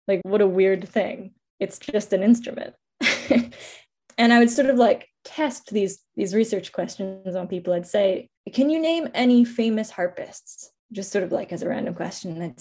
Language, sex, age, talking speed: English, female, 20-39, 190 wpm